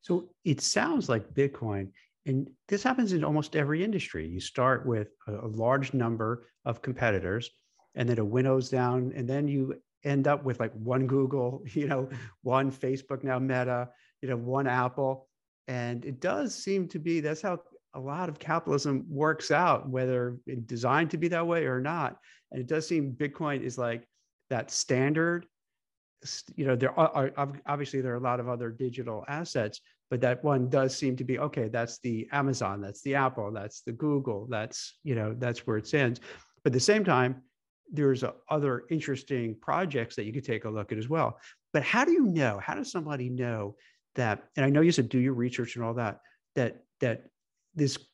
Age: 50-69